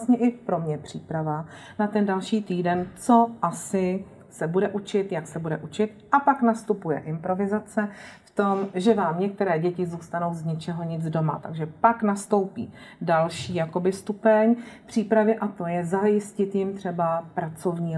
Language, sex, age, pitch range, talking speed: Czech, female, 40-59, 170-205 Hz, 145 wpm